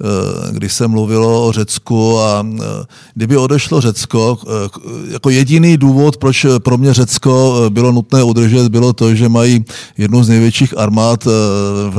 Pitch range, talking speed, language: 110-135 Hz, 140 wpm, Czech